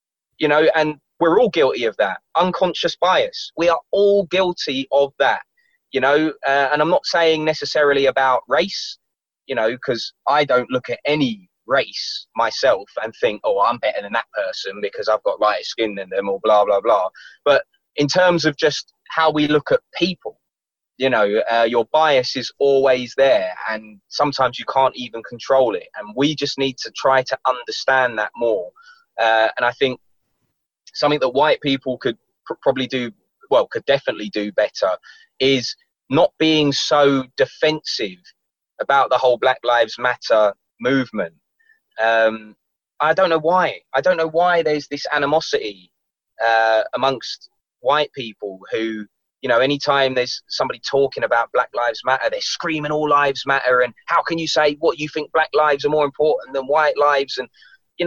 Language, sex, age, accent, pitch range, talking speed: English, male, 20-39, British, 130-170 Hz, 175 wpm